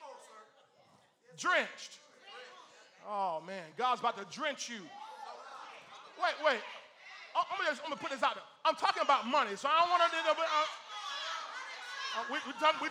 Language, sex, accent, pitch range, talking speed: English, male, American, 260-340 Hz, 150 wpm